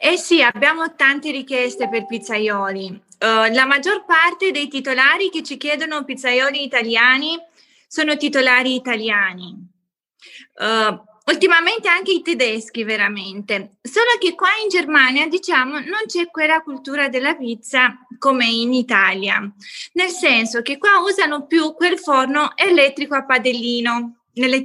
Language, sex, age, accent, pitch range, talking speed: Italian, female, 20-39, native, 240-335 Hz, 125 wpm